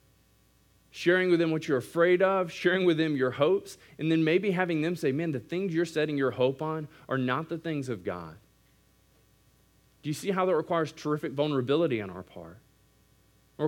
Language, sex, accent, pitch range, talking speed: English, male, American, 145-225 Hz, 195 wpm